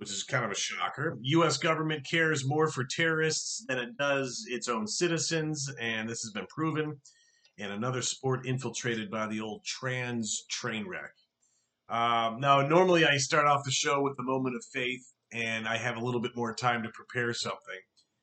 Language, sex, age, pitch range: English, male, 40-59, 110-140 Hz